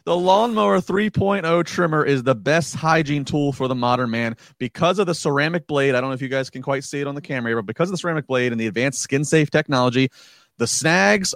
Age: 30-49